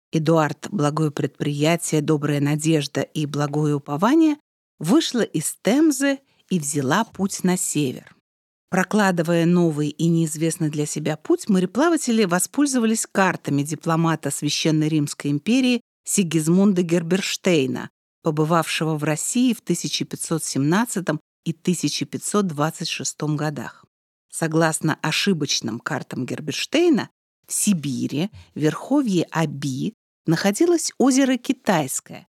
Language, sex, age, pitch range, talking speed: Russian, female, 40-59, 150-195 Hz, 95 wpm